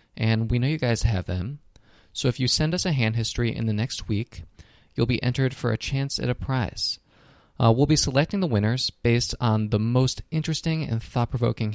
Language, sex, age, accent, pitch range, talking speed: English, male, 20-39, American, 105-135 Hz, 210 wpm